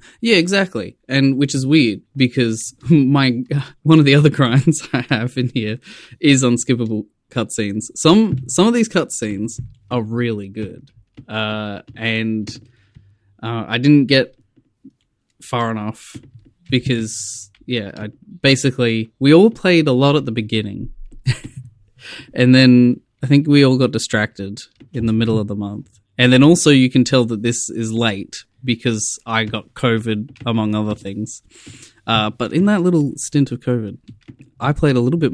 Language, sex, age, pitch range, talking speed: English, male, 20-39, 110-135 Hz, 155 wpm